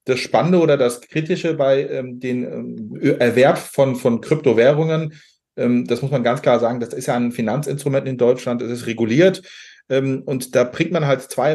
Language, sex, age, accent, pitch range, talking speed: English, male, 30-49, German, 125-155 Hz, 185 wpm